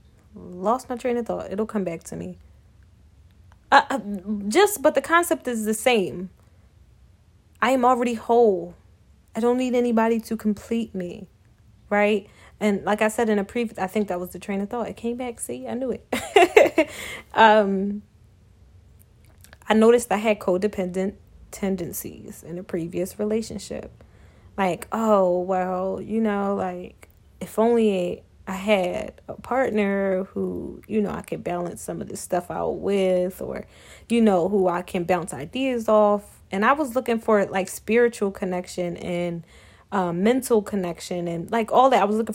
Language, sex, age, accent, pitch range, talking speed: English, female, 20-39, American, 180-225 Hz, 165 wpm